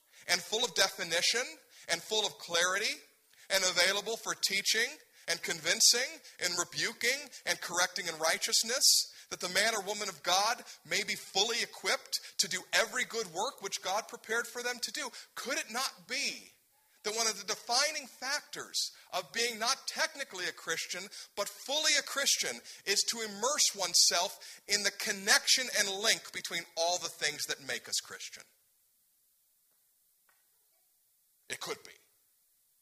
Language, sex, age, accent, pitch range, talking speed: English, male, 50-69, American, 180-230 Hz, 150 wpm